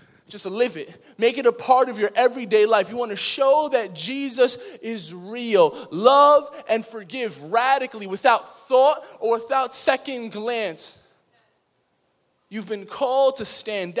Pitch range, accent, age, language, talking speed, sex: 185-255 Hz, American, 20-39, English, 145 wpm, male